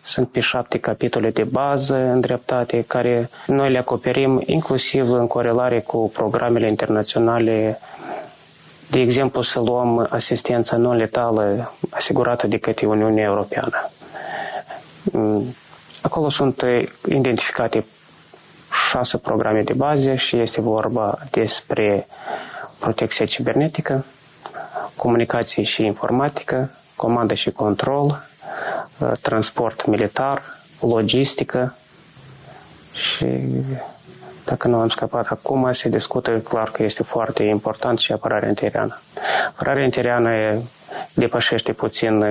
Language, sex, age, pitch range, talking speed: Romanian, male, 20-39, 110-130 Hz, 100 wpm